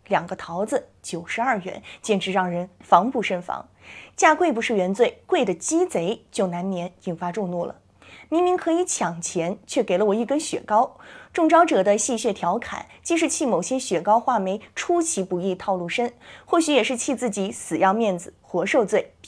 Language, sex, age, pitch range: Chinese, female, 20-39, 190-310 Hz